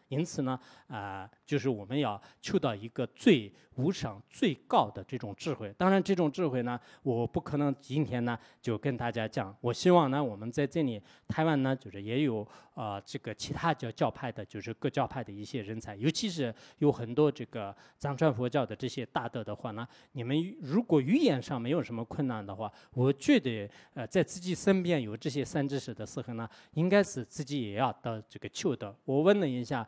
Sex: male